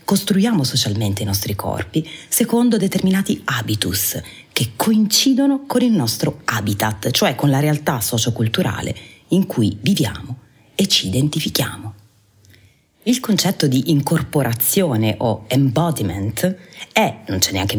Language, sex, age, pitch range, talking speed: Italian, female, 30-49, 110-175 Hz, 120 wpm